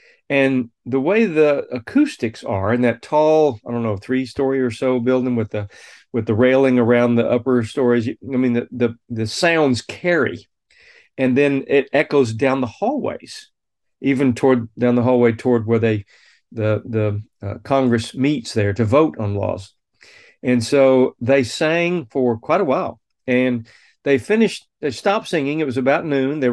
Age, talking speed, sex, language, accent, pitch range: 40-59, 175 wpm, male, English, American, 120-140 Hz